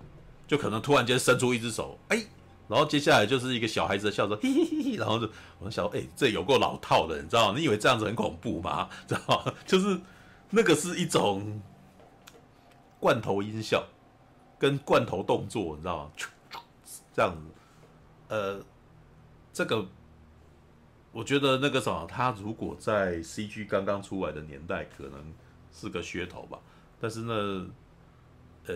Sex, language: male, Chinese